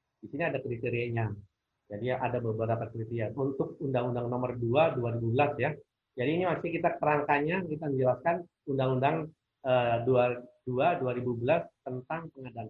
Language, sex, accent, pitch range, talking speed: Indonesian, male, native, 125-155 Hz, 130 wpm